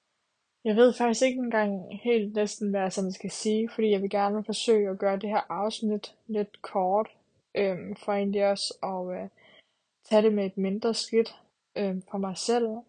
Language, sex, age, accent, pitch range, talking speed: Danish, female, 20-39, native, 195-220 Hz, 180 wpm